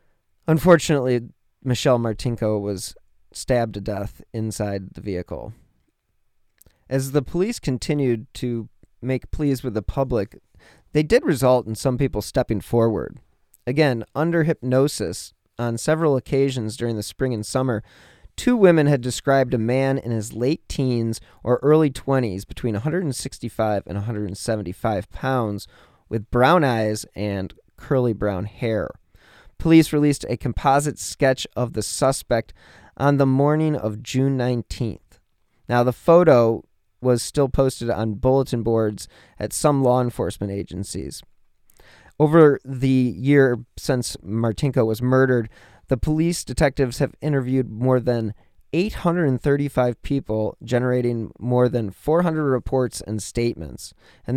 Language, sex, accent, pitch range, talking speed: English, male, American, 110-135 Hz, 130 wpm